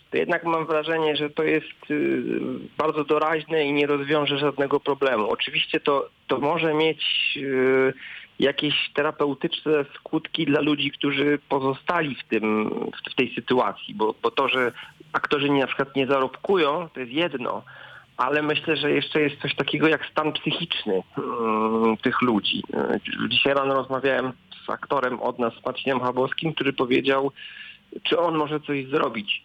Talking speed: 150 wpm